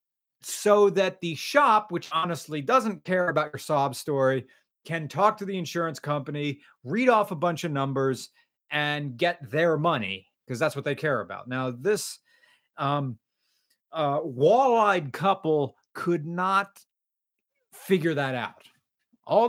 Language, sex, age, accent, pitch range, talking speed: English, male, 40-59, American, 140-200 Hz, 145 wpm